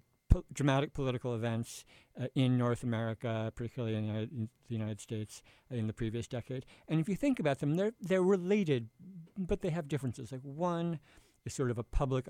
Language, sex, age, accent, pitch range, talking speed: English, male, 50-69, American, 115-135 Hz, 175 wpm